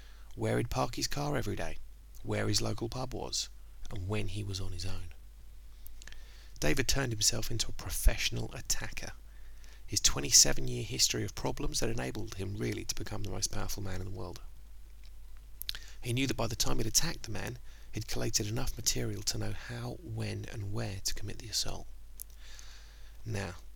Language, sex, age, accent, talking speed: English, male, 30-49, British, 175 wpm